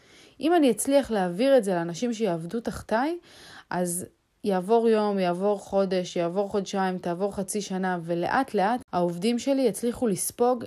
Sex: female